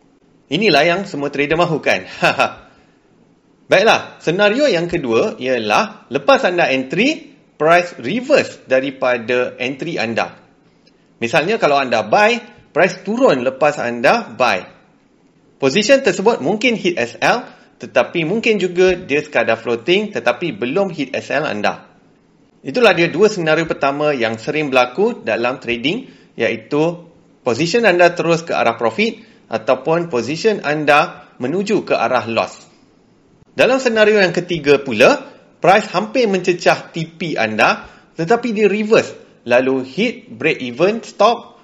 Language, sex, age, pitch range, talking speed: Malay, male, 30-49, 135-205 Hz, 125 wpm